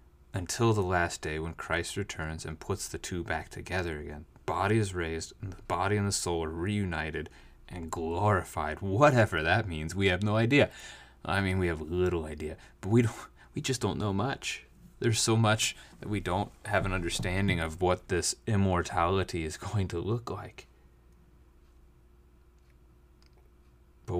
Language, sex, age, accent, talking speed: English, male, 30-49, American, 165 wpm